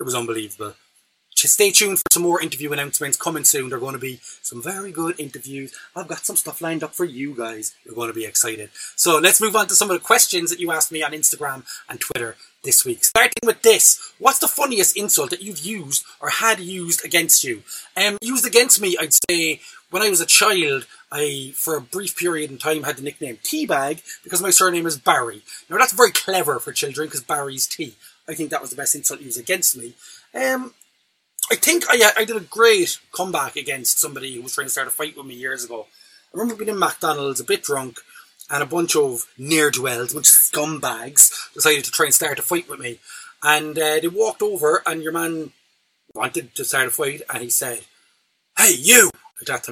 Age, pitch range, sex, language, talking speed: 20-39, 145-215 Hz, male, English, 220 wpm